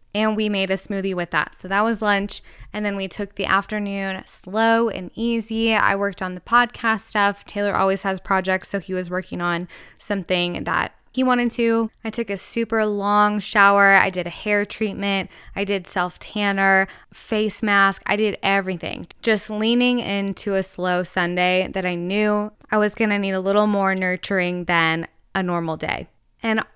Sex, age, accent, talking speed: female, 10-29, American, 185 wpm